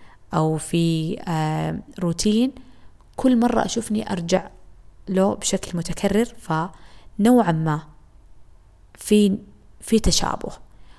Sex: female